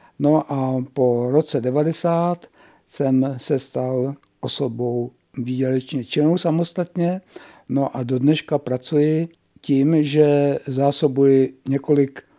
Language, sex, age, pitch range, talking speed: Czech, male, 60-79, 130-150 Hz, 100 wpm